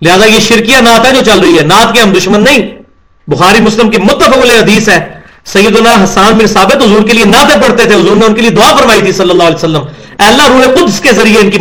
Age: 40-59